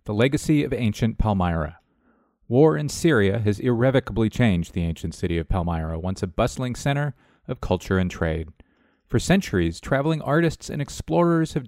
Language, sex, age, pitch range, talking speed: English, male, 40-59, 105-160 Hz, 160 wpm